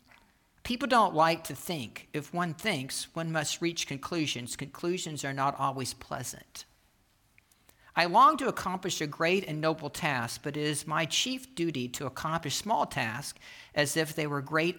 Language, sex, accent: English, male, American